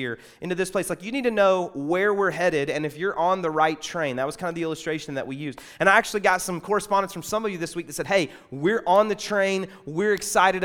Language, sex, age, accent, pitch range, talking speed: English, male, 30-49, American, 160-205 Hz, 270 wpm